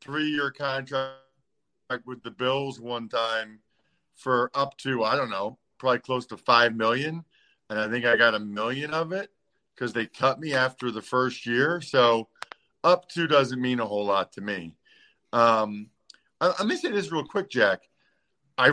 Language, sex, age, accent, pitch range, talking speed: English, male, 50-69, American, 115-150 Hz, 175 wpm